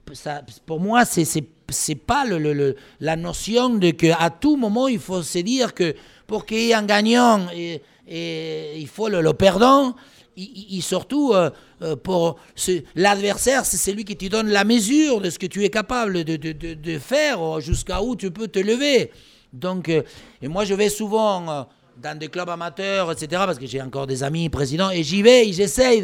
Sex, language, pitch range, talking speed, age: male, French, 170-220 Hz, 195 wpm, 60-79